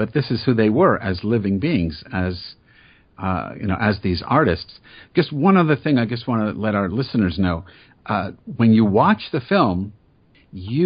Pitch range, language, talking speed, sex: 95-120 Hz, English, 195 wpm, male